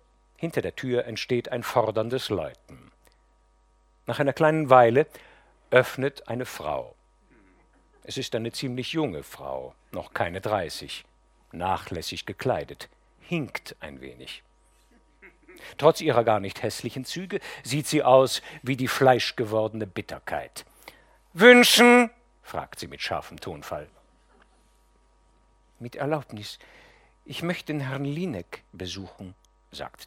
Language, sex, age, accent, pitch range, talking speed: German, male, 50-69, German, 105-140 Hz, 110 wpm